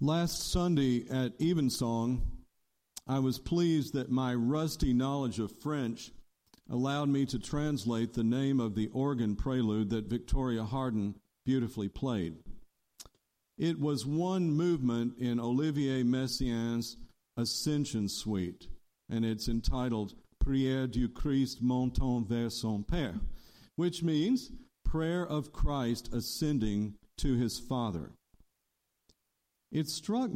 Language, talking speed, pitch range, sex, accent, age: English, 115 wpm, 115-155 Hz, male, American, 50-69